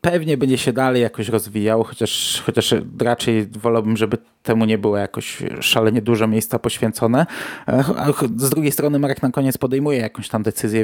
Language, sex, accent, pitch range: Polish, male, native, 115-145 Hz